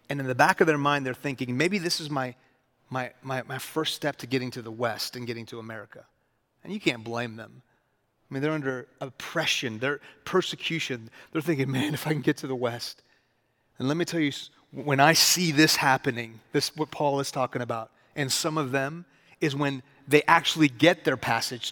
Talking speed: 210 wpm